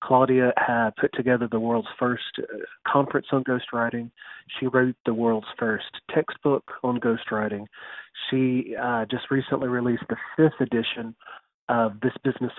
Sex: male